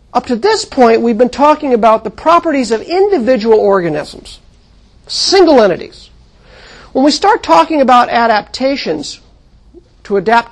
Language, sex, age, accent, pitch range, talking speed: English, male, 50-69, American, 190-255 Hz, 130 wpm